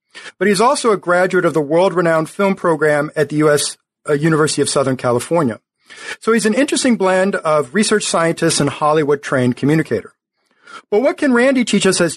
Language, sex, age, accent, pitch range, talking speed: English, male, 50-69, American, 155-200 Hz, 180 wpm